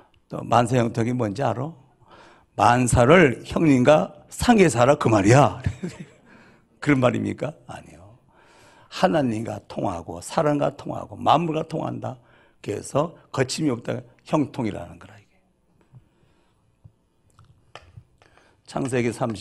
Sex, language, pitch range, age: male, Korean, 115-155 Hz, 60-79